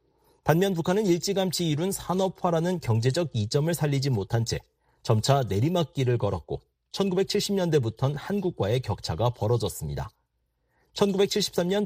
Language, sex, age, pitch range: Korean, male, 40-59, 120-180 Hz